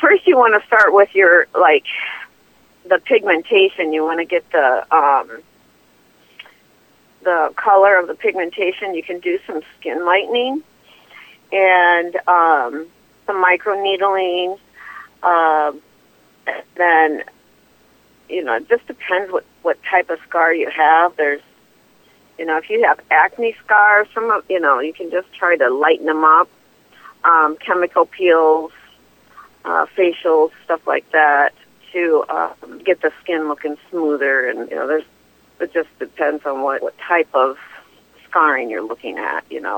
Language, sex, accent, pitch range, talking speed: English, female, American, 155-210 Hz, 150 wpm